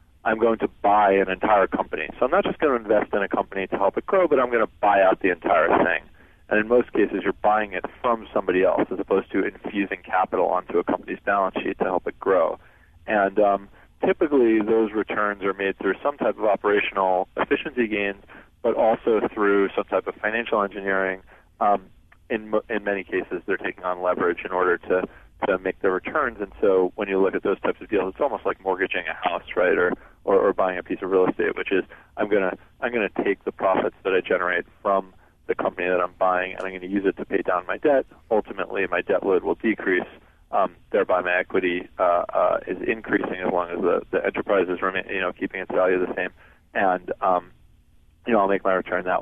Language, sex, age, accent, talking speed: English, male, 40-59, American, 230 wpm